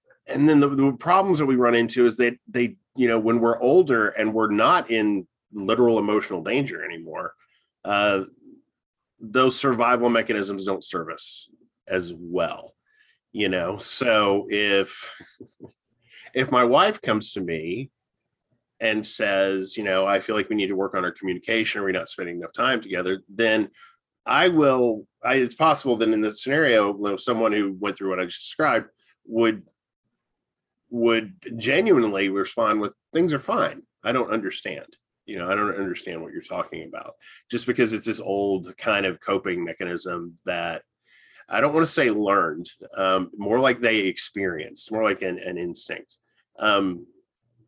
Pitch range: 95-120 Hz